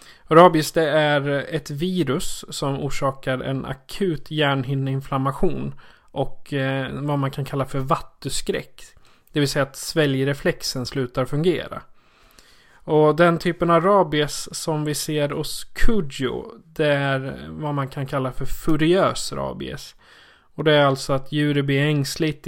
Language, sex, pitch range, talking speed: Swedish, male, 135-155 Hz, 135 wpm